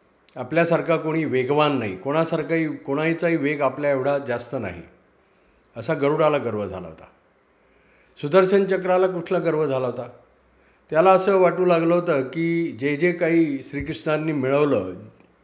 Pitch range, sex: 135-170 Hz, male